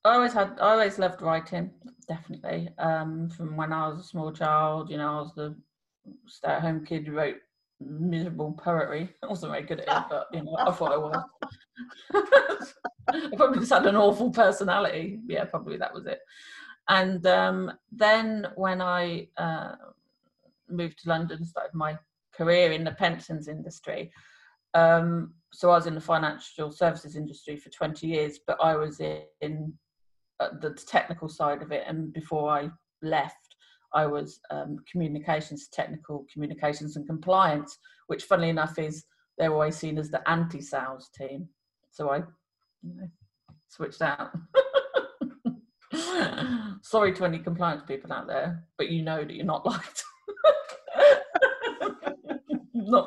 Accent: British